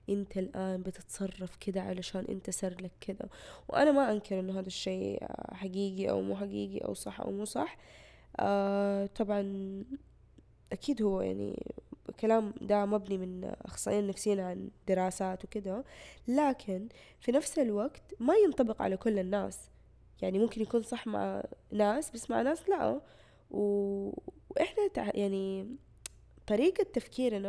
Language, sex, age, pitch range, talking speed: Arabic, female, 10-29, 195-235 Hz, 140 wpm